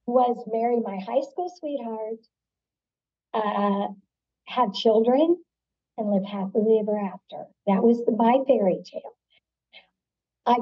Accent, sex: American, male